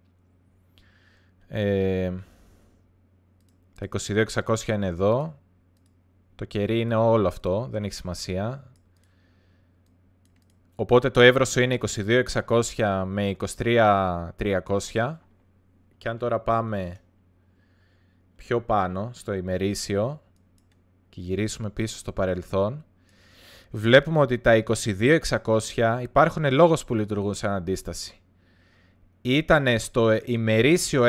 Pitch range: 90-120 Hz